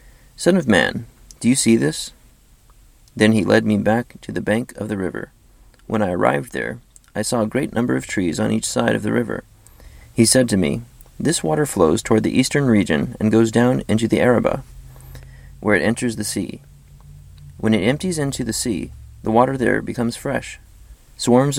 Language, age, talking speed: English, 30-49, 190 wpm